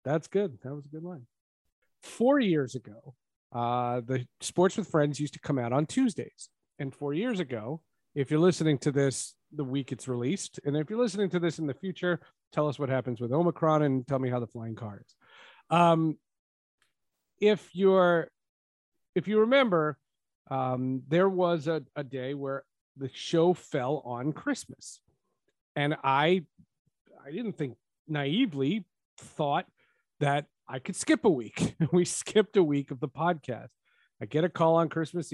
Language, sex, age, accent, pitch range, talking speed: English, male, 40-59, American, 130-170 Hz, 170 wpm